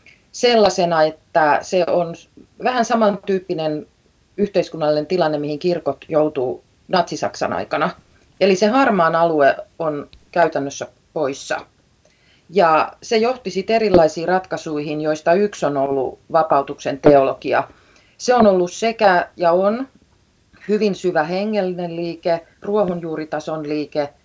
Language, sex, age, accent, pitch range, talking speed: Finnish, female, 30-49, native, 145-185 Hz, 105 wpm